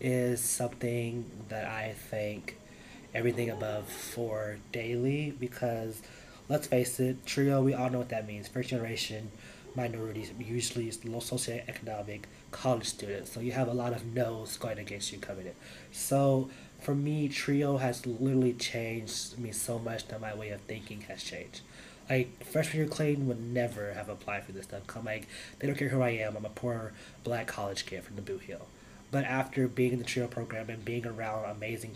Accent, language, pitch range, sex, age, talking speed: American, English, 110-125 Hz, male, 20-39, 180 wpm